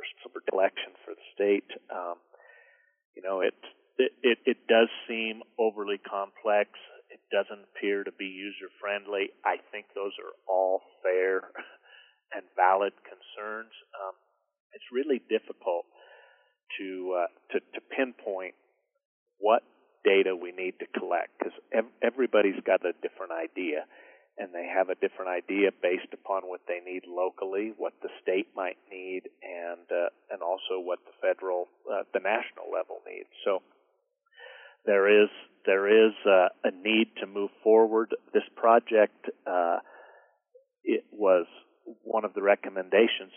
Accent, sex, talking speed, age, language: American, male, 145 wpm, 40-59, English